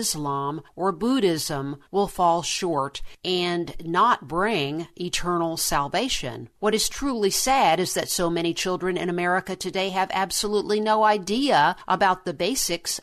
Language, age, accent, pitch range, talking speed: English, 50-69, American, 165-205 Hz, 140 wpm